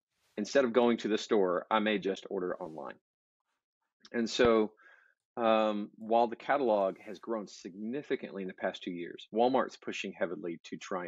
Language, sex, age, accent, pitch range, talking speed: English, male, 40-59, American, 95-115 Hz, 160 wpm